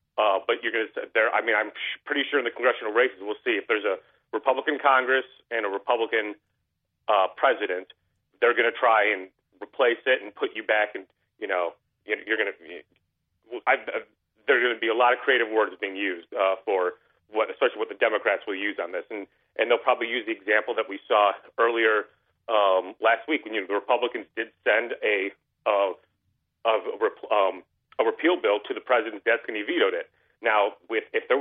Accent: American